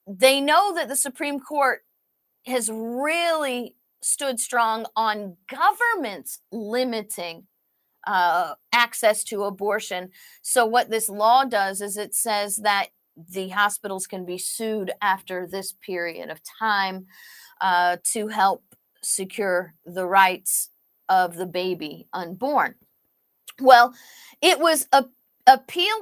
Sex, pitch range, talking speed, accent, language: female, 205-275 Hz, 120 wpm, American, English